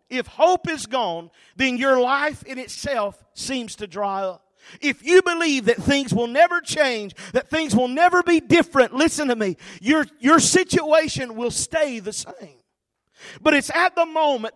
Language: English